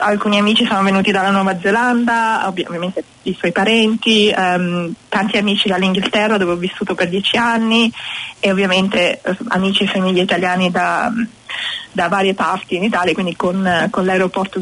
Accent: native